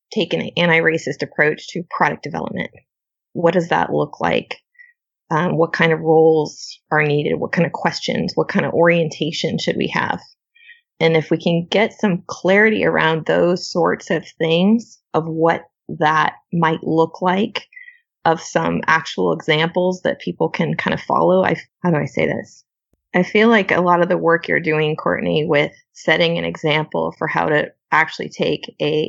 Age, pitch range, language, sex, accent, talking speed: 20-39, 155-185 Hz, English, female, American, 175 wpm